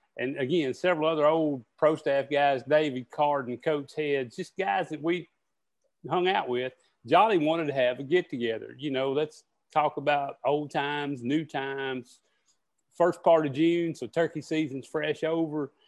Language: English